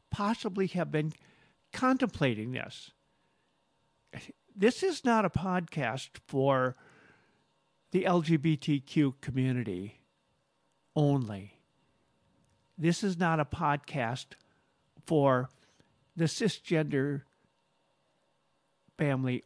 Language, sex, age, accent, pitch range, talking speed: English, male, 50-69, American, 130-175 Hz, 75 wpm